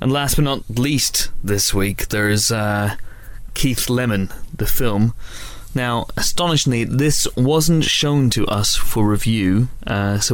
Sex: male